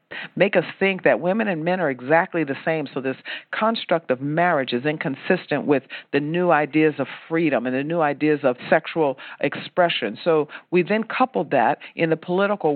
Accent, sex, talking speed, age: American, female, 185 wpm, 50-69